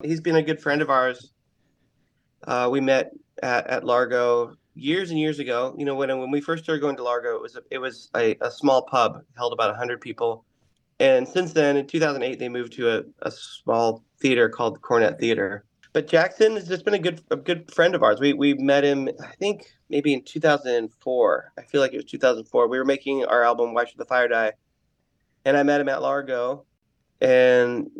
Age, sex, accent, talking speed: 30-49, male, American, 230 wpm